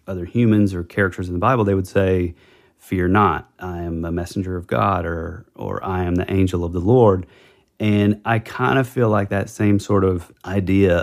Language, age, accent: English, 30-49, American